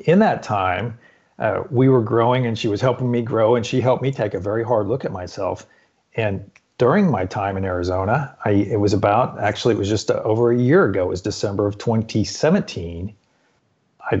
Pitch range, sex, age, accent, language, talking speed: 105-125 Hz, male, 40-59, American, English, 205 wpm